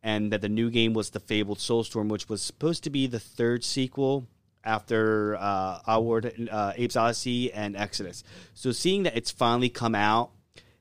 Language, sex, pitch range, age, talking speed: English, male, 105-130 Hz, 30-49, 185 wpm